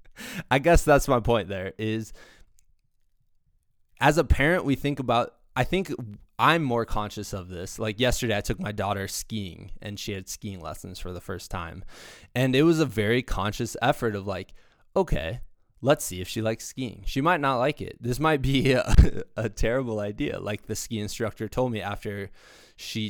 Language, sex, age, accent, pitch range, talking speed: English, male, 20-39, American, 100-135 Hz, 185 wpm